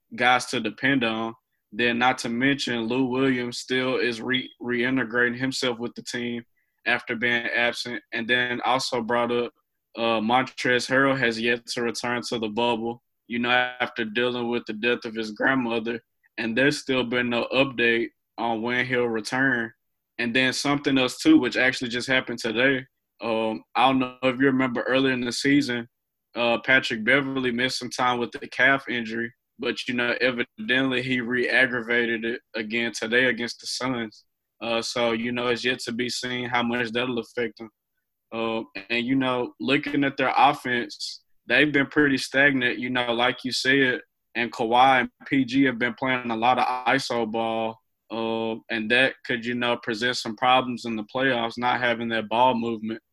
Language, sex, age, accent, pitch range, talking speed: English, male, 20-39, American, 115-130 Hz, 180 wpm